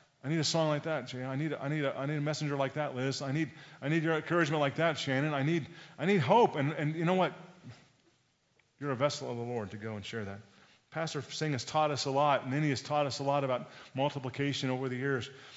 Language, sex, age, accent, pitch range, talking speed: English, male, 40-59, American, 130-155 Hz, 245 wpm